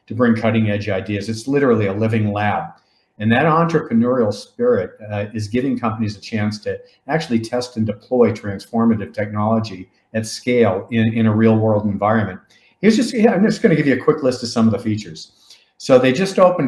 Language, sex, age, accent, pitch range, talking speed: English, male, 50-69, American, 105-120 Hz, 195 wpm